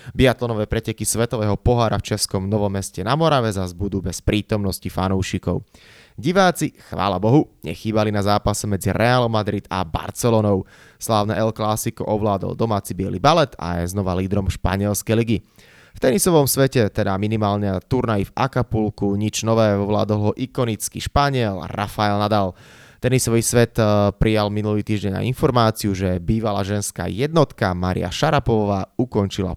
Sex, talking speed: male, 140 wpm